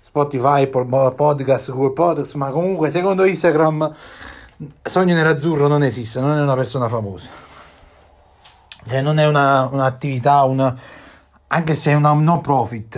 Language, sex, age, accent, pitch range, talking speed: Italian, male, 30-49, native, 135-175 Hz, 135 wpm